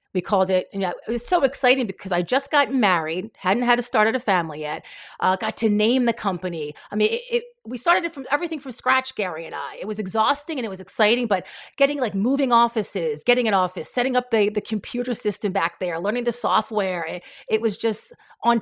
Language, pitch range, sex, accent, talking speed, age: English, 185-245 Hz, female, American, 230 wpm, 40-59